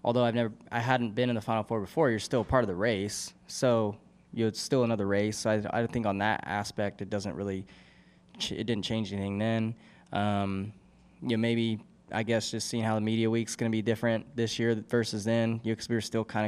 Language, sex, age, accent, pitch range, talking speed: English, male, 10-29, American, 105-120 Hz, 230 wpm